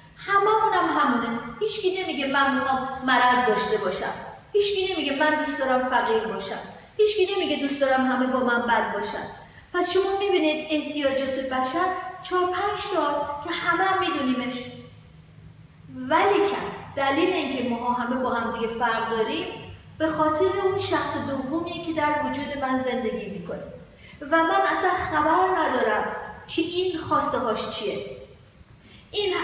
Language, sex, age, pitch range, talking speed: Persian, female, 40-59, 250-335 Hz, 140 wpm